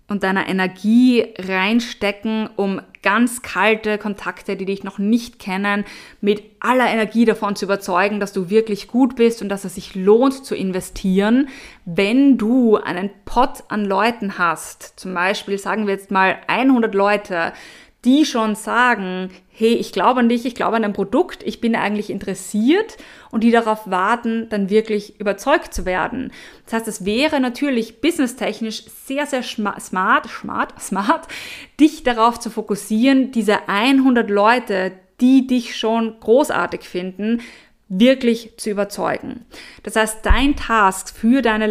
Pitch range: 190-230 Hz